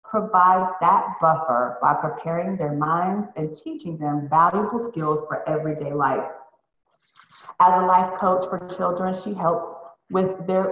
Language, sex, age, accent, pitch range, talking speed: English, female, 40-59, American, 155-190 Hz, 140 wpm